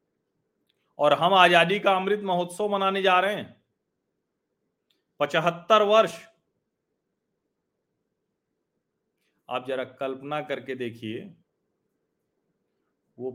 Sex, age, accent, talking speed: male, 40-59, native, 80 wpm